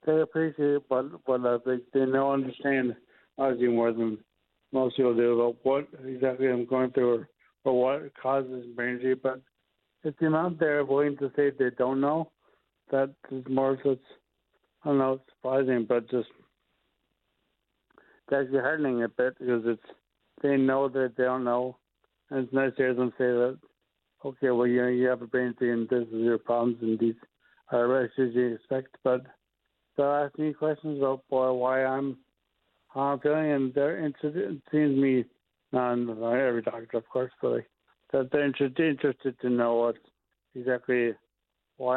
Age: 60-79